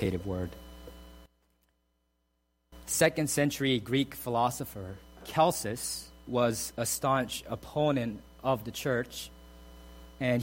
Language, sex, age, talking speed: English, male, 40-59, 80 wpm